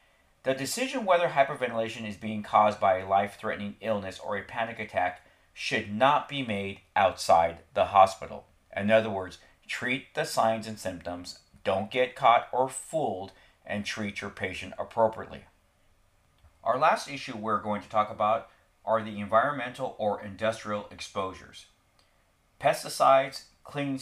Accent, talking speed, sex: American, 140 wpm, male